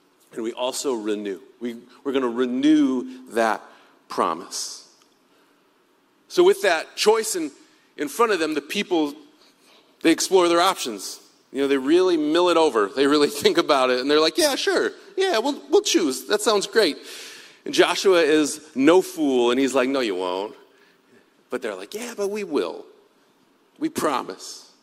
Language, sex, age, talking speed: English, male, 40-59, 170 wpm